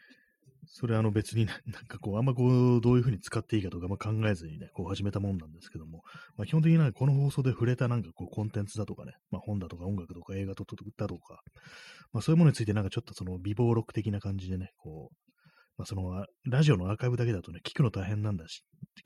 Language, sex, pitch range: Japanese, male, 90-125 Hz